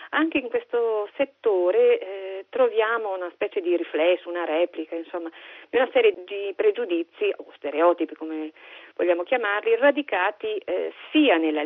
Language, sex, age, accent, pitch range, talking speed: Italian, female, 40-59, native, 170-240 Hz, 140 wpm